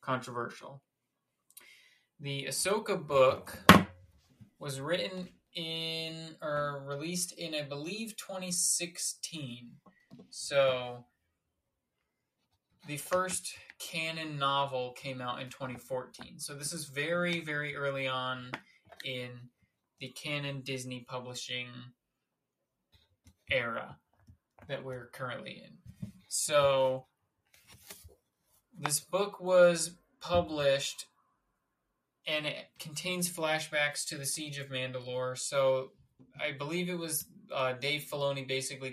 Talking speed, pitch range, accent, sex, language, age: 95 wpm, 130-160 Hz, American, male, English, 20-39